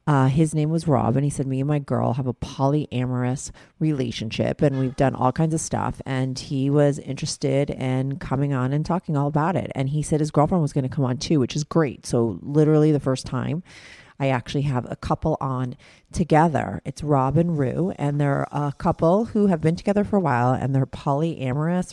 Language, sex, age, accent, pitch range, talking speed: English, female, 40-59, American, 130-165 Hz, 215 wpm